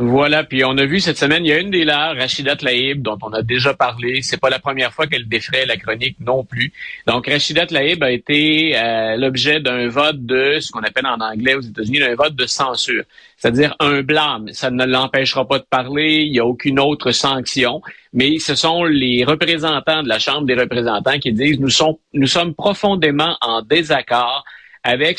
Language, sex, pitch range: French, male, 120-155 Hz